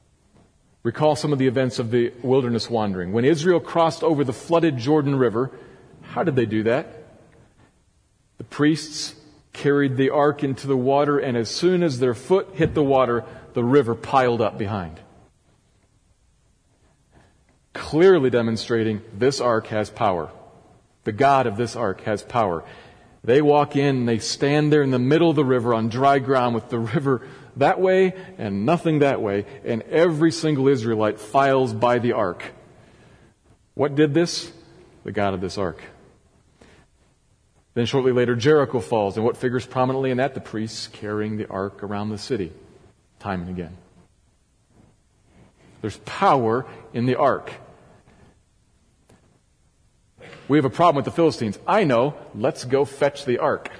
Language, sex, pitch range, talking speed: English, male, 110-145 Hz, 155 wpm